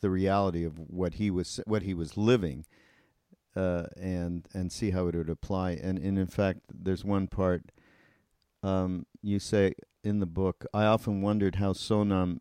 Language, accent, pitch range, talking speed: English, American, 90-110 Hz, 175 wpm